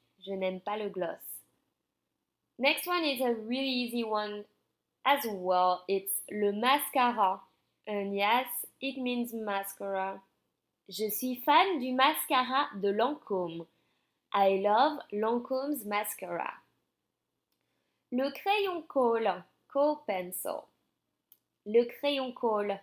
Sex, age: female, 20-39